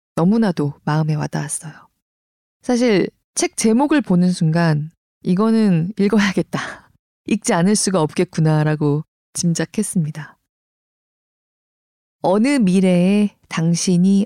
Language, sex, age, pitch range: Korean, female, 20-39, 160-215 Hz